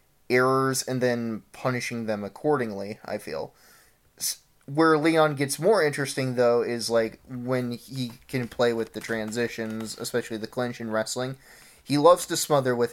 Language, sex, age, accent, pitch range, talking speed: English, male, 20-39, American, 115-135 Hz, 155 wpm